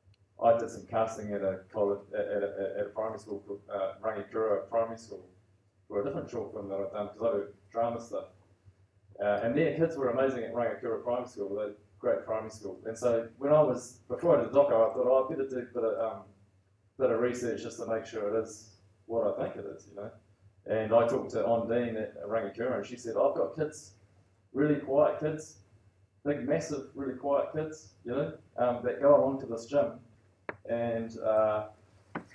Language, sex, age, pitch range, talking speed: English, male, 20-39, 100-125 Hz, 215 wpm